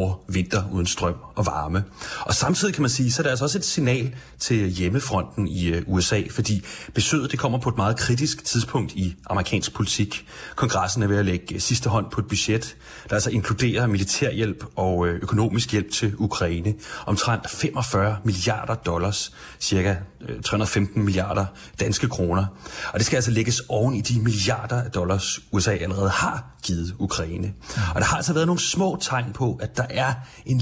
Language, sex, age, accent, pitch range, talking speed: Danish, male, 30-49, native, 95-120 Hz, 170 wpm